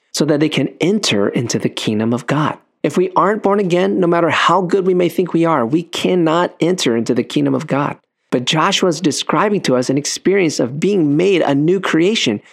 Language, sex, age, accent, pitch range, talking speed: English, male, 40-59, American, 120-160 Hz, 220 wpm